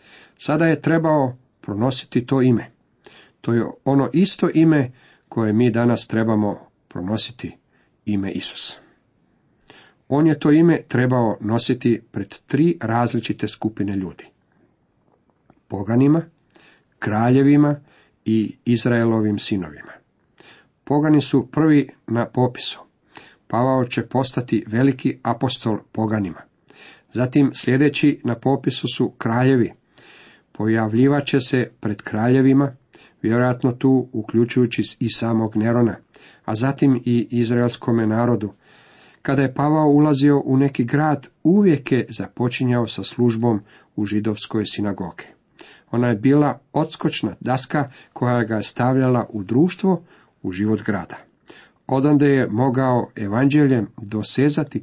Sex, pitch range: male, 110-140 Hz